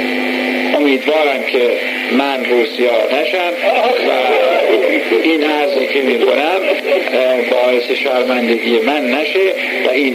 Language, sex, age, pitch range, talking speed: Persian, male, 60-79, 140-190 Hz, 105 wpm